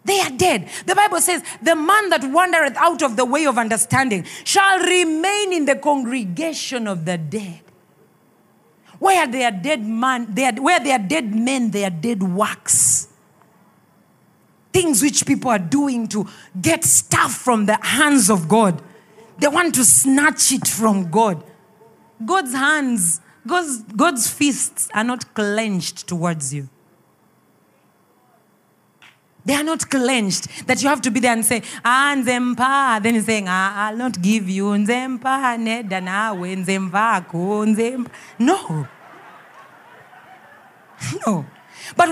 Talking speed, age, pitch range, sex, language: 135 wpm, 40-59, 210-295 Hz, female, English